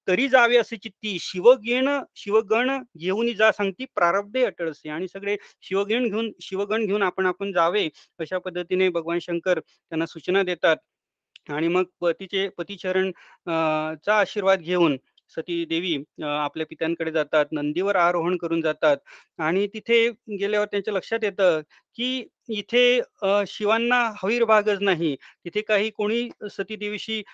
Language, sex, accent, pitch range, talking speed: Marathi, male, native, 170-215 Hz, 95 wpm